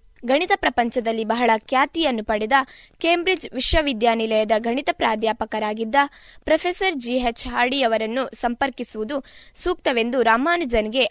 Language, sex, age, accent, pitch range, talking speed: Kannada, female, 20-39, native, 225-295 Hz, 80 wpm